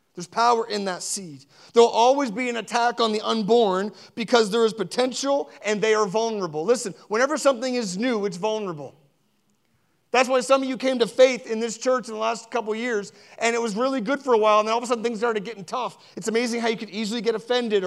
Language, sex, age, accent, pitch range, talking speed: English, male, 30-49, American, 210-250 Hz, 240 wpm